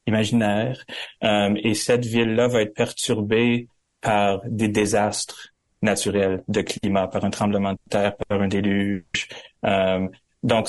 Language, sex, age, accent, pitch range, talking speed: French, male, 30-49, Canadian, 95-110 Hz, 135 wpm